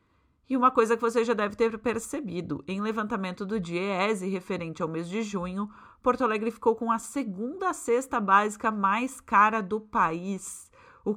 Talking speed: 165 wpm